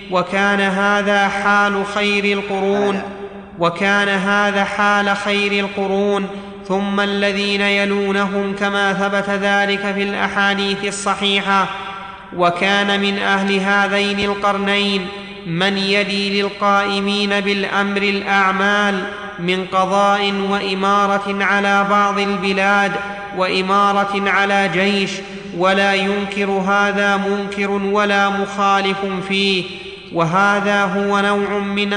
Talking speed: 90 wpm